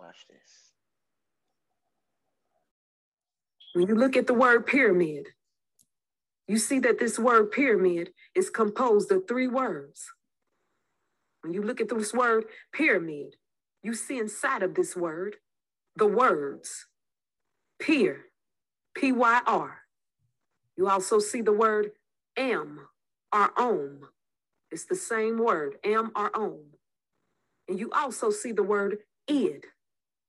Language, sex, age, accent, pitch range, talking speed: English, female, 40-59, American, 205-265 Hz, 115 wpm